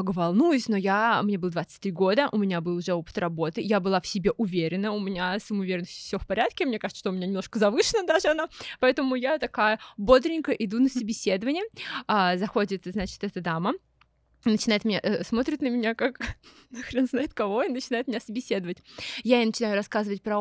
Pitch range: 195-240 Hz